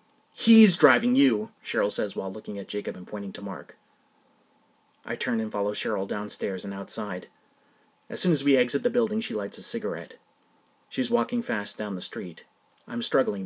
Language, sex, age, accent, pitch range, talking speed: English, male, 30-49, American, 130-205 Hz, 180 wpm